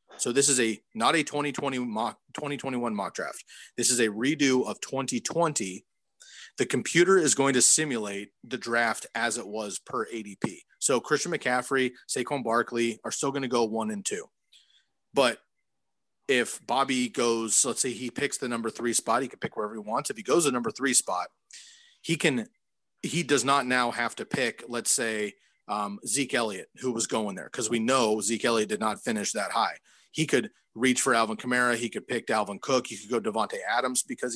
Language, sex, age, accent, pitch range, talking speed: English, male, 30-49, American, 115-140 Hz, 200 wpm